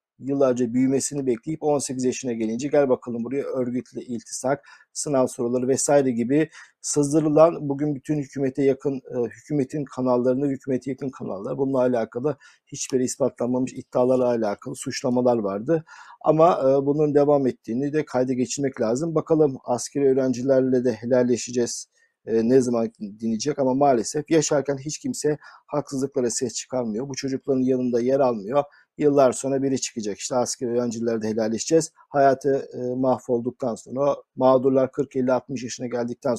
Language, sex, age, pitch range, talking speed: Turkish, male, 50-69, 125-145 Hz, 130 wpm